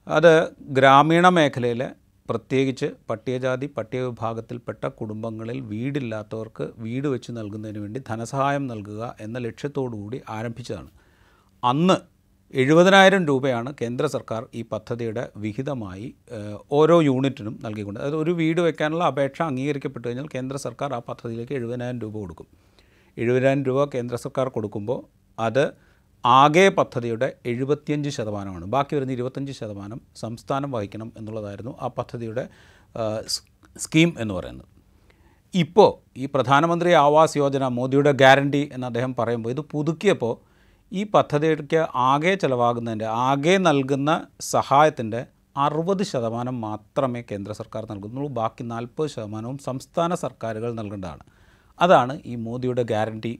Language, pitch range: Malayalam, 110-140 Hz